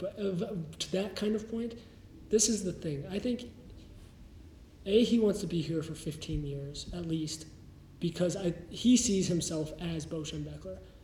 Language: English